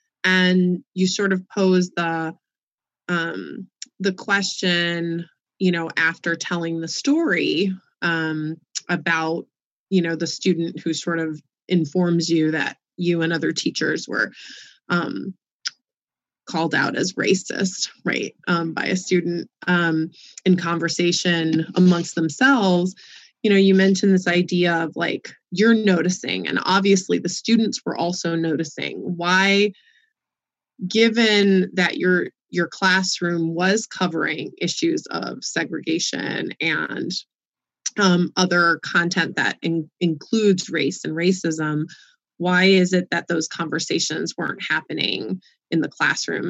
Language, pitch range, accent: English, 170-190 Hz, American